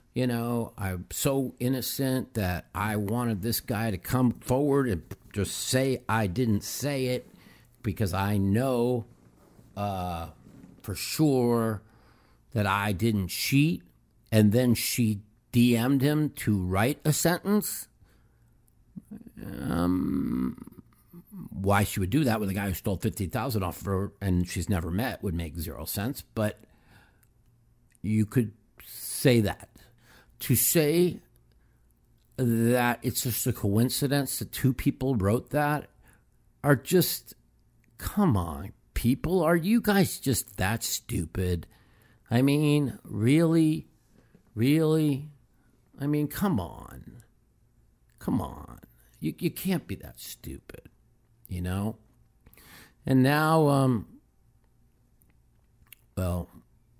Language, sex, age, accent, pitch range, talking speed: English, male, 50-69, American, 100-135 Hz, 115 wpm